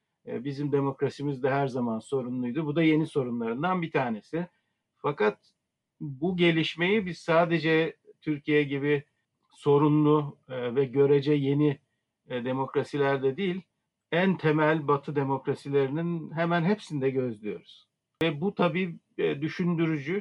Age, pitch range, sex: 50-69, 130-165 Hz, male